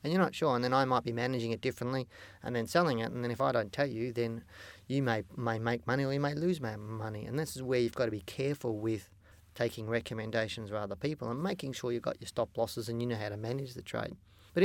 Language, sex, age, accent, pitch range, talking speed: English, male, 30-49, Australian, 110-130 Hz, 275 wpm